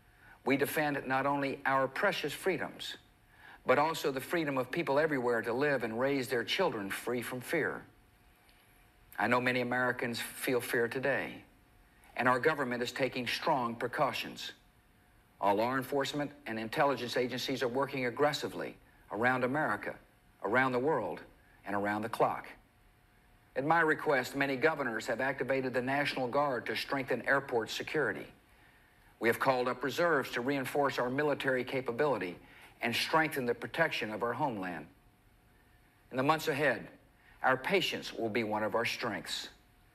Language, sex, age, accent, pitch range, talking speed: English, male, 60-79, American, 125-140 Hz, 145 wpm